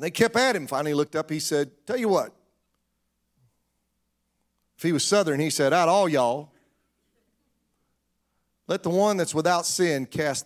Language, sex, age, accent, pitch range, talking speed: English, male, 40-59, American, 155-240 Hz, 165 wpm